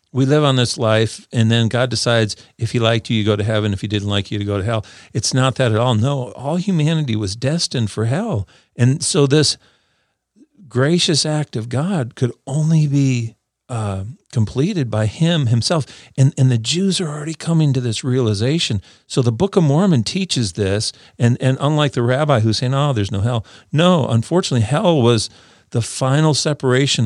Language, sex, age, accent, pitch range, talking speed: English, male, 50-69, American, 110-135 Hz, 195 wpm